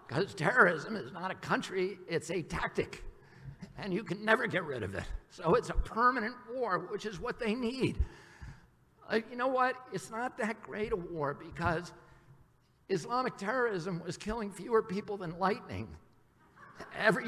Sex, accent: male, American